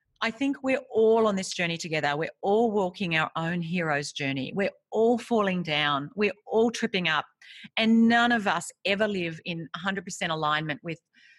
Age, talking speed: 40-59, 175 wpm